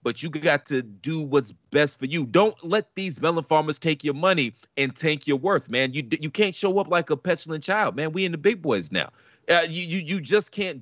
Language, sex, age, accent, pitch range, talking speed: English, male, 40-59, American, 120-175 Hz, 245 wpm